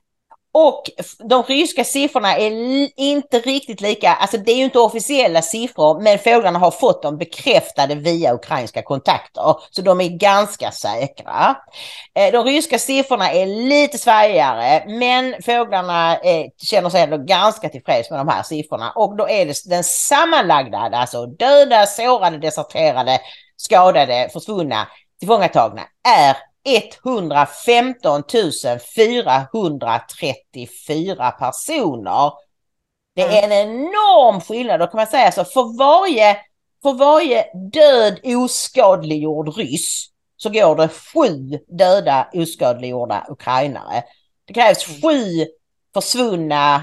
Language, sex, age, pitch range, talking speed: English, female, 40-59, 155-245 Hz, 110 wpm